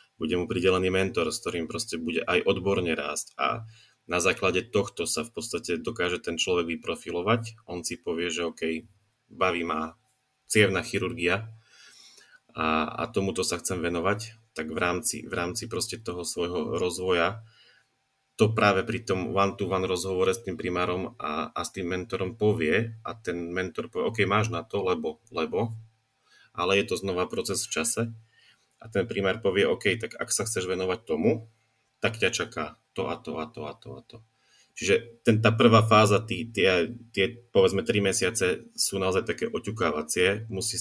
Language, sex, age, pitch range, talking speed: Slovak, male, 30-49, 90-115 Hz, 170 wpm